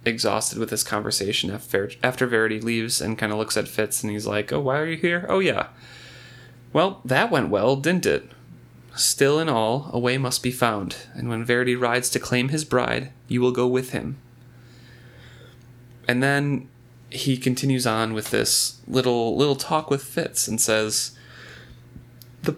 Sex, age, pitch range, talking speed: male, 30-49, 120-145 Hz, 180 wpm